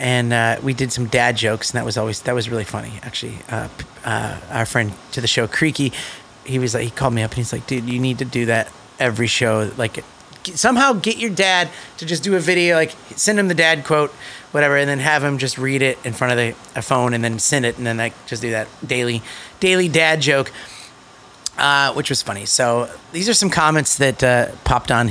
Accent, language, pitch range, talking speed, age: American, English, 120-170 Hz, 240 wpm, 30-49